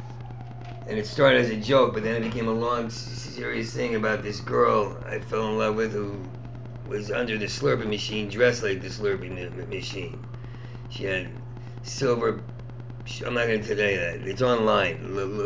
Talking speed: 175 wpm